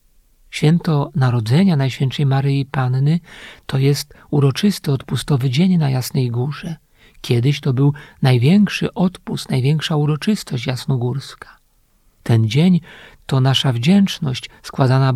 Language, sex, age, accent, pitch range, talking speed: Polish, male, 50-69, native, 135-160 Hz, 105 wpm